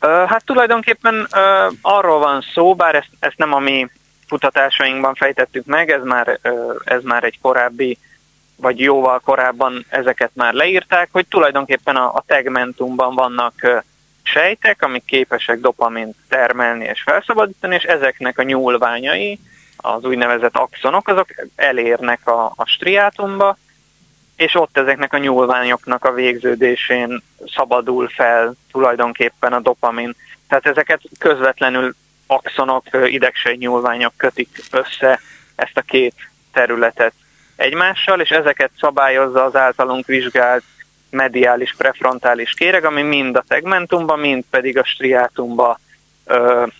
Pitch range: 125-145 Hz